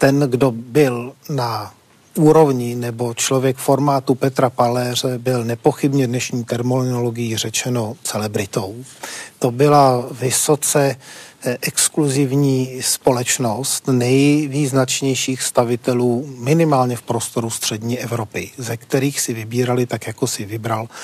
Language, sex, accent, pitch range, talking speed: Czech, male, native, 120-135 Hz, 105 wpm